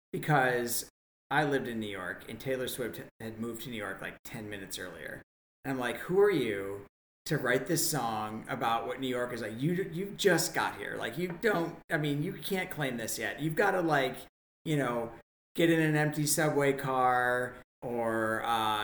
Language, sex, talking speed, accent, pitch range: English, male, 200 wpm, American, 115-160 Hz